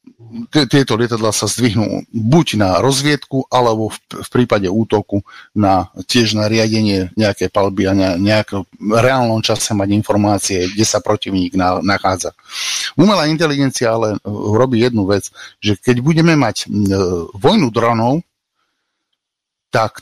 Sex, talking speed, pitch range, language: male, 120 wpm, 100-120 Hz, Slovak